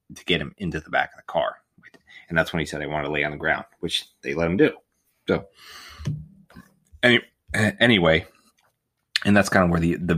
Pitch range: 80-95 Hz